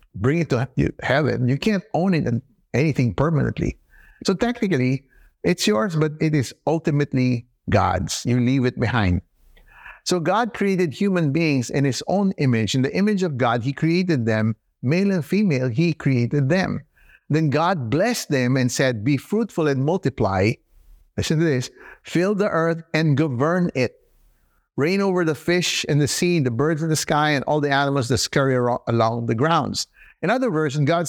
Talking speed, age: 180 wpm, 50-69